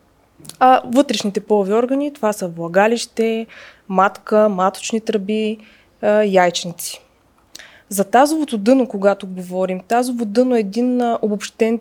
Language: Bulgarian